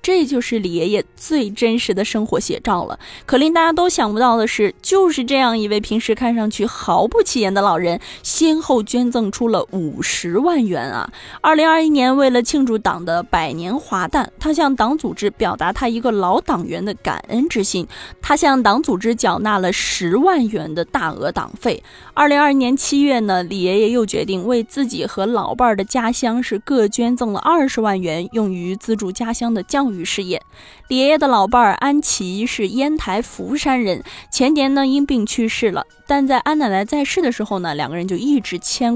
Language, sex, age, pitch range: Chinese, female, 20-39, 200-270 Hz